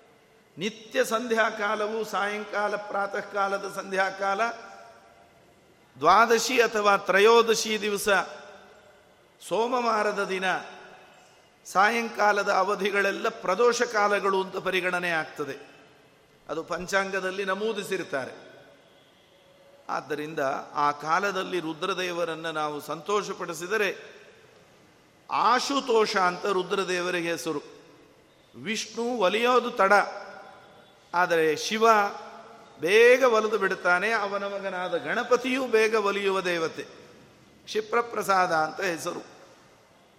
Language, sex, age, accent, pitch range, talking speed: Kannada, male, 50-69, native, 180-220 Hz, 70 wpm